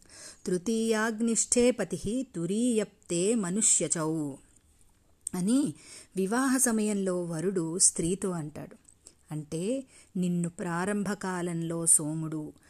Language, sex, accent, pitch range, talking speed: Telugu, female, native, 165-230 Hz, 65 wpm